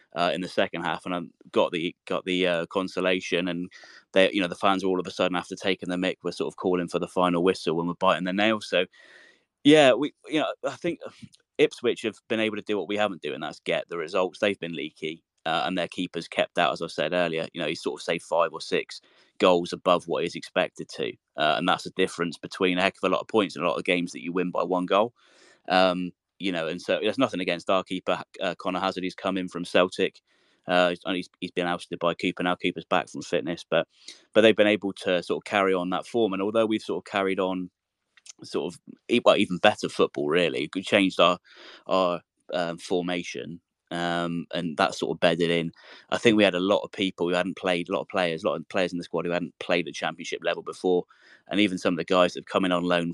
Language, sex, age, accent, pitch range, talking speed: English, male, 20-39, British, 85-95 Hz, 255 wpm